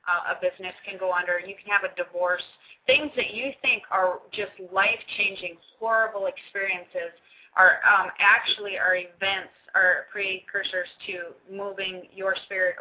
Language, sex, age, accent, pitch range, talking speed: English, female, 20-39, American, 175-225 Hz, 145 wpm